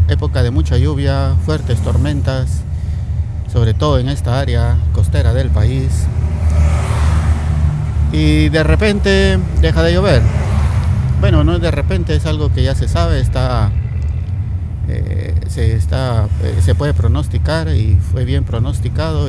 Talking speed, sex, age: 135 wpm, male, 50-69